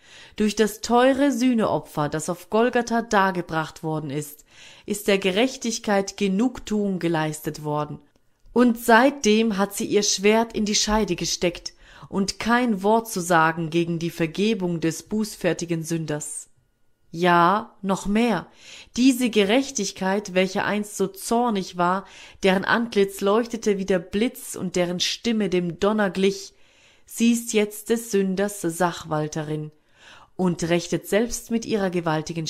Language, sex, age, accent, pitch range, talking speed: German, female, 30-49, German, 165-215 Hz, 130 wpm